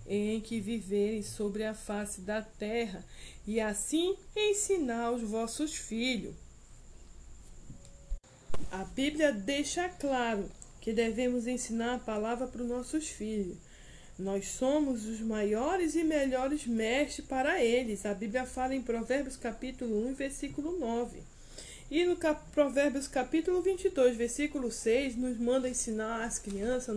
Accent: Brazilian